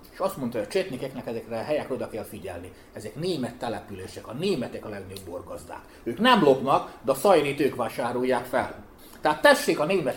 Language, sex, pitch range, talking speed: Hungarian, male, 120-160 Hz, 190 wpm